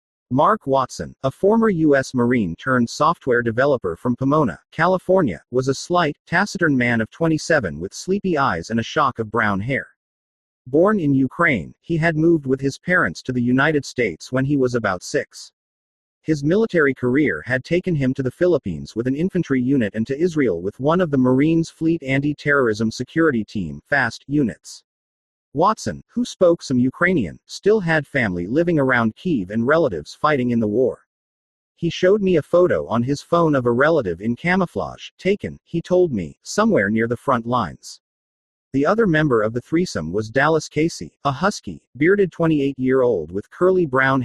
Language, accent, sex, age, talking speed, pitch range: English, American, male, 40-59, 170 wpm, 120-165 Hz